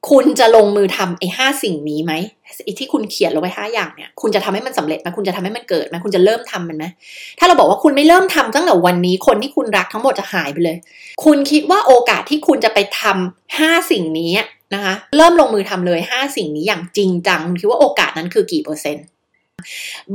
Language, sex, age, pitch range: Thai, female, 20-39, 185-285 Hz